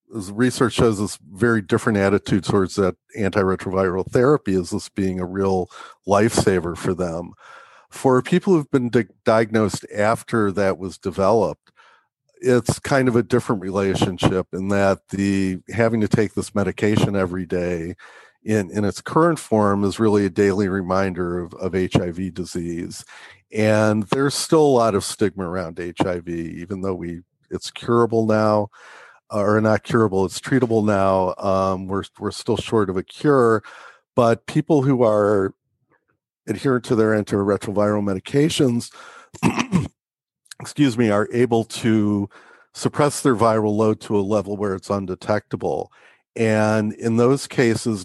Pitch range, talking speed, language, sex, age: 95-115 Hz, 145 wpm, English, male, 50-69